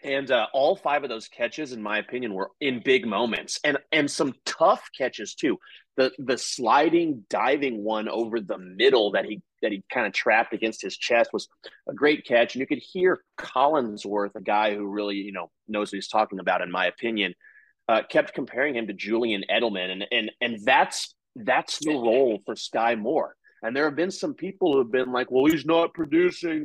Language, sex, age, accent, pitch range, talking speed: English, male, 30-49, American, 110-150 Hz, 205 wpm